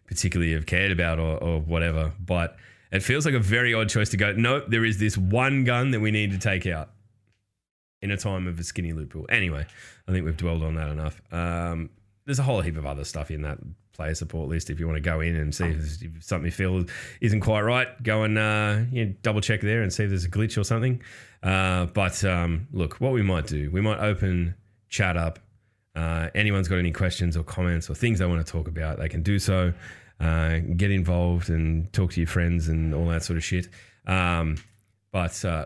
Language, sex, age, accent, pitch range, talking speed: English, male, 10-29, Australian, 85-110 Hz, 230 wpm